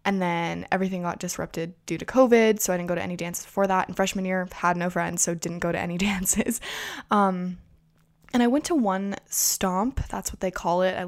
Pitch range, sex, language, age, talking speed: 175-205 Hz, female, English, 10-29, 225 wpm